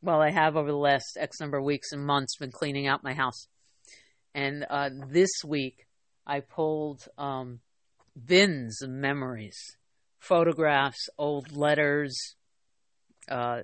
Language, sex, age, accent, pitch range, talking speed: English, female, 50-69, American, 135-160 Hz, 135 wpm